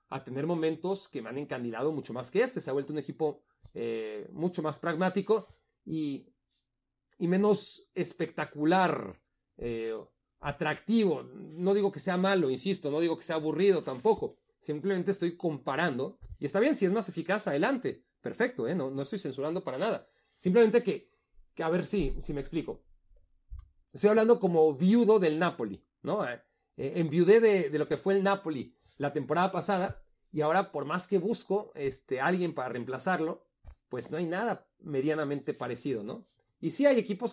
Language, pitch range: Spanish, 140-195 Hz